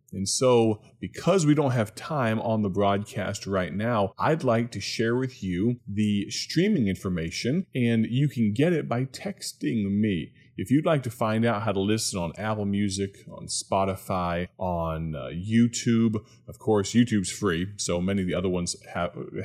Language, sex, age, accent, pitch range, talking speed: English, male, 30-49, American, 100-125 Hz, 175 wpm